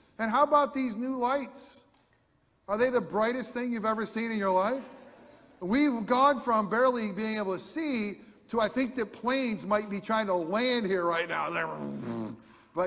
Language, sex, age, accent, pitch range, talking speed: English, male, 50-69, American, 185-250 Hz, 180 wpm